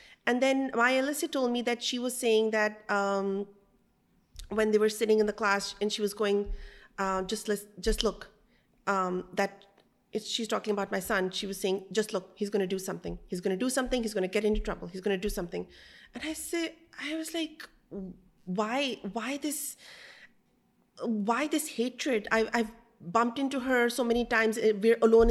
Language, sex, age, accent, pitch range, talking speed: English, female, 30-49, Indian, 200-245 Hz, 195 wpm